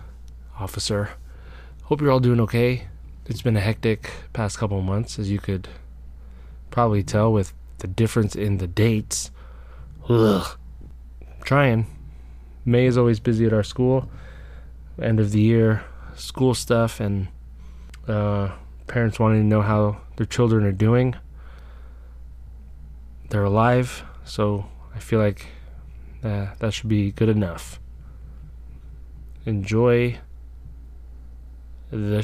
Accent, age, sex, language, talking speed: American, 20-39, male, English, 120 wpm